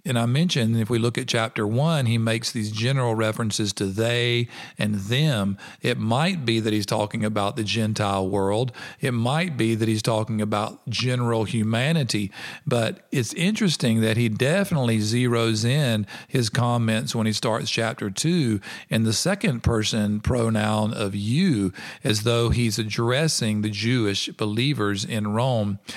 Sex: male